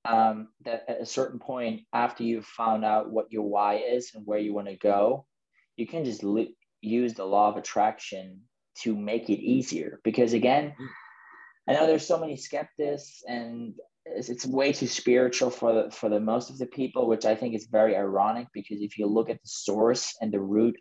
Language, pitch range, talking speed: English, 105-125 Hz, 205 wpm